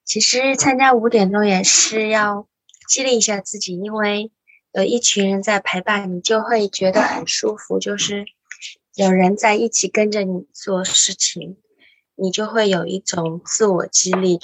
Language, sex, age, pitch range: Chinese, female, 20-39, 175-210 Hz